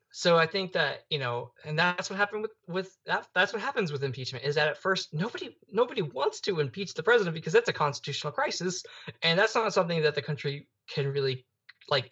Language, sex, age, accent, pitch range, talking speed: English, male, 20-39, American, 125-165 Hz, 220 wpm